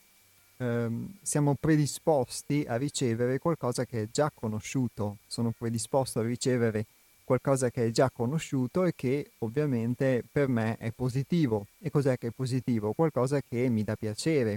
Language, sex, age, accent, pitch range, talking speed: Italian, male, 30-49, native, 110-140 Hz, 150 wpm